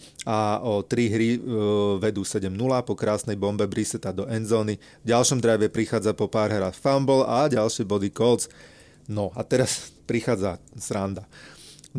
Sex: male